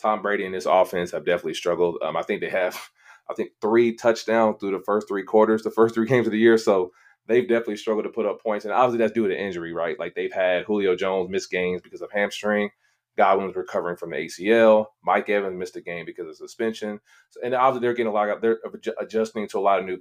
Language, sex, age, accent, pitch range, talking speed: English, male, 30-49, American, 95-120 Hz, 245 wpm